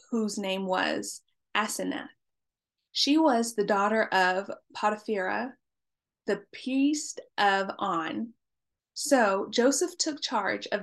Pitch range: 210-270 Hz